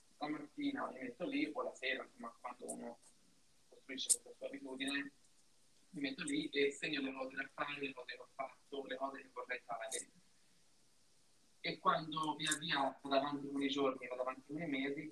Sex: male